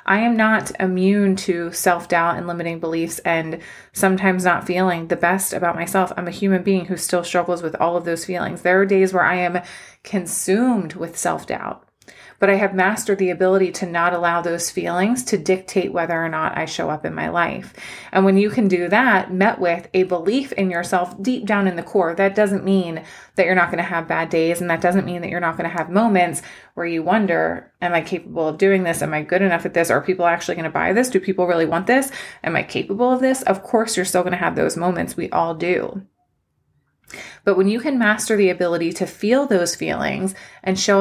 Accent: American